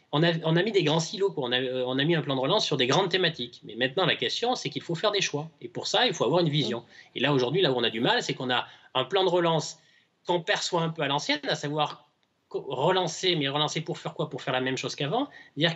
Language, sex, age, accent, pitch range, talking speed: French, male, 20-39, French, 130-175 Hz, 290 wpm